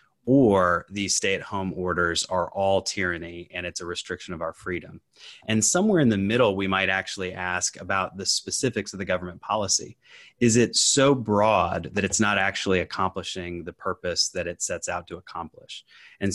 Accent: American